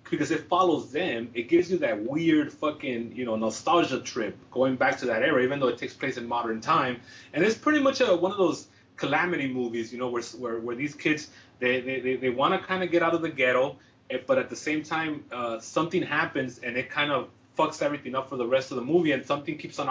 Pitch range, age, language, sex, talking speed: 125-170 Hz, 30-49, English, male, 240 wpm